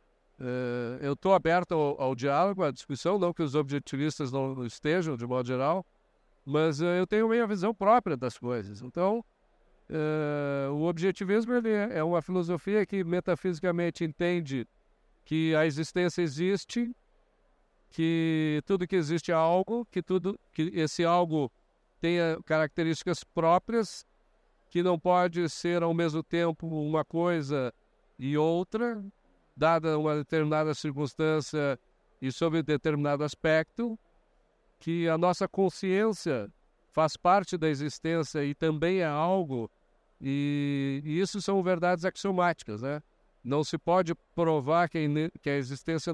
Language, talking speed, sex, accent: Portuguese, 130 wpm, male, Brazilian